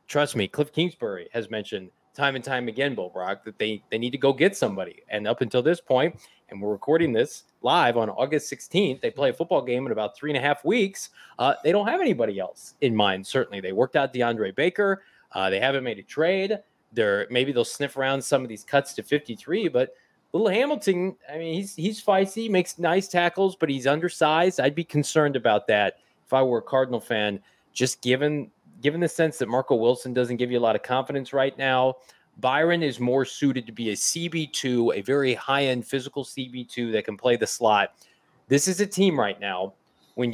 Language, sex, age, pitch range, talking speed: English, male, 20-39, 120-160 Hz, 215 wpm